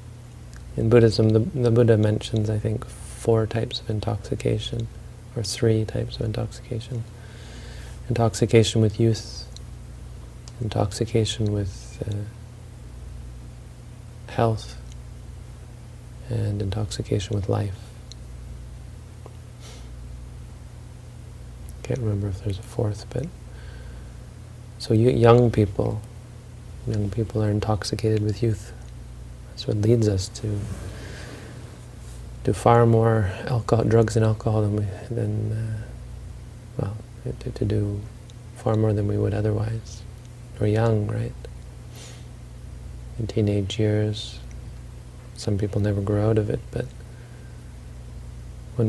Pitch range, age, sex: 105-115 Hz, 40-59, male